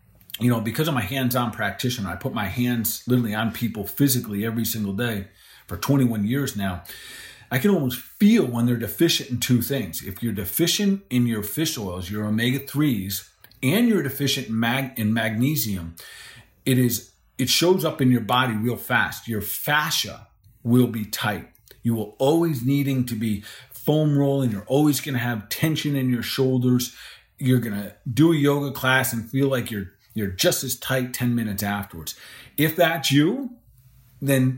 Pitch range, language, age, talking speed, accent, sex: 110-135 Hz, English, 40-59, 175 wpm, American, male